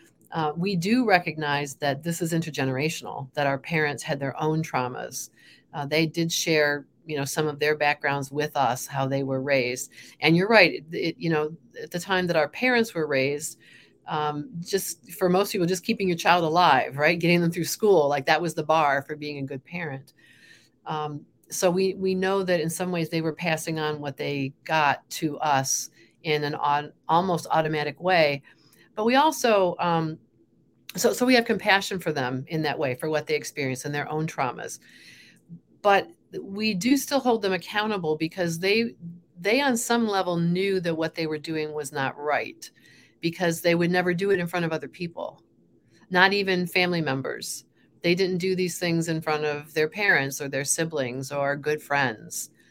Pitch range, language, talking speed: 145-180 Hz, English, 190 wpm